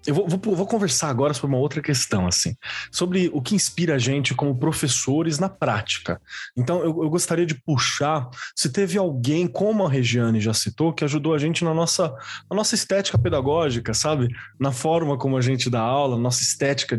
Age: 20-39